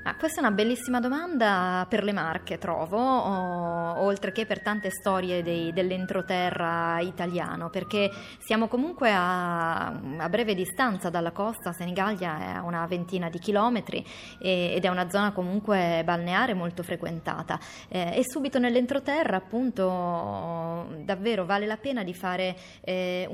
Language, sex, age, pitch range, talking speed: Italian, female, 20-39, 180-215 Hz, 145 wpm